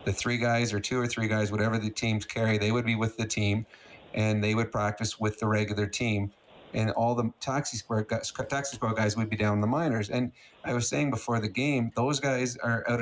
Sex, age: male, 40-59